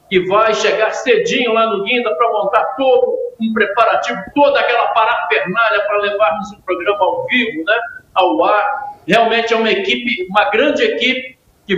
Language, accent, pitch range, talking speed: Portuguese, Brazilian, 205-250 Hz, 165 wpm